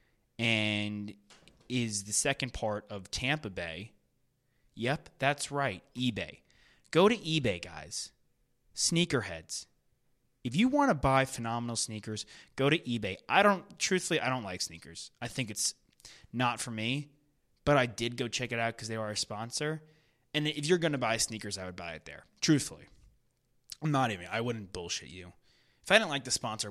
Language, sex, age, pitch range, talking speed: English, male, 20-39, 105-145 Hz, 175 wpm